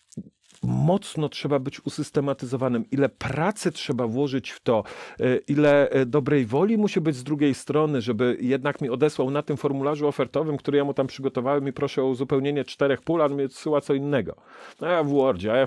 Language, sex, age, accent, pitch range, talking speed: Polish, male, 40-59, native, 125-150 Hz, 185 wpm